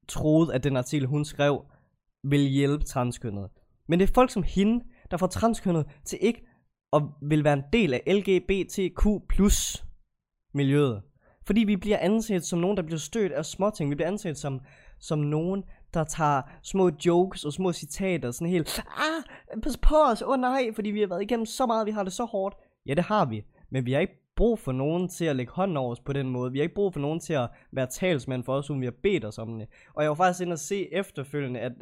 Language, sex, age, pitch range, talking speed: Danish, male, 20-39, 125-185 Hz, 230 wpm